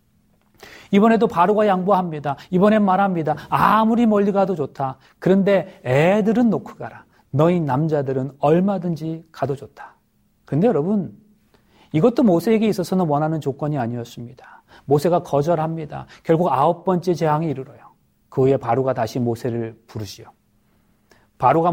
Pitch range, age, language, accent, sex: 140-190 Hz, 40-59, Korean, native, male